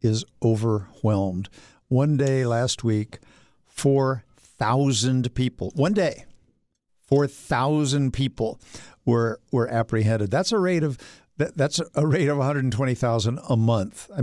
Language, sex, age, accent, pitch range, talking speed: English, male, 50-69, American, 120-160 Hz, 115 wpm